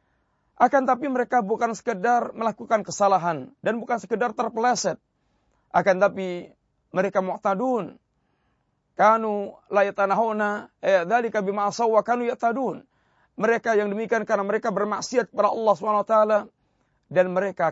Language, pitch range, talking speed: Malay, 200-235 Hz, 115 wpm